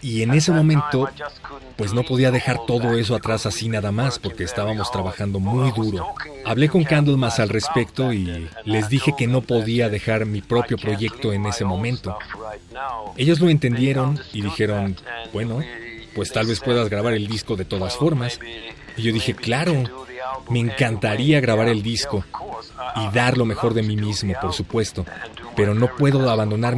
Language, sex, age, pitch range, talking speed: Spanish, male, 30-49, 100-125 Hz, 170 wpm